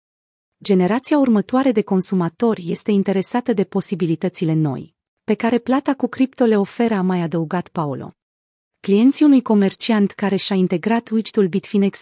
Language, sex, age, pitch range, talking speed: Romanian, female, 30-49, 175-230 Hz, 140 wpm